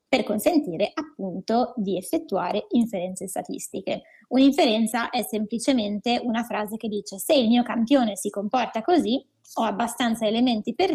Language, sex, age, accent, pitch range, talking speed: Italian, female, 20-39, native, 210-265 Hz, 135 wpm